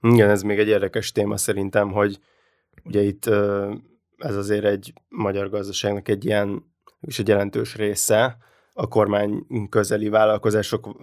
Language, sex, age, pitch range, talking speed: Hungarian, male, 20-39, 100-110 Hz, 135 wpm